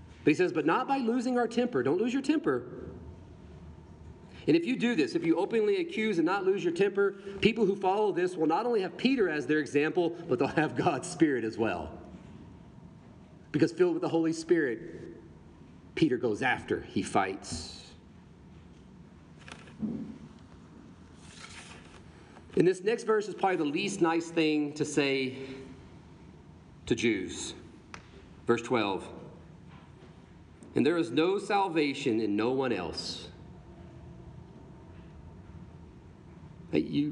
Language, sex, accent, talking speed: English, male, American, 135 wpm